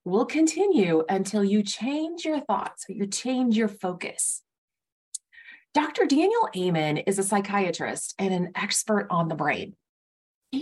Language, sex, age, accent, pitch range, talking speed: English, female, 30-49, American, 180-245 Hz, 140 wpm